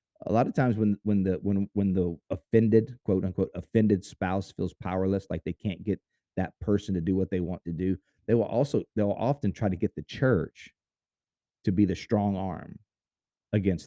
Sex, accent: male, American